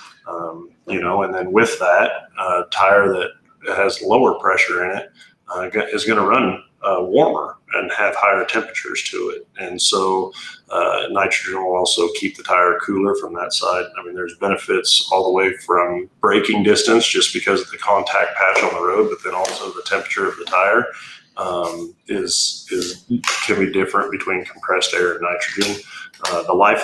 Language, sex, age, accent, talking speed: English, male, 30-49, American, 185 wpm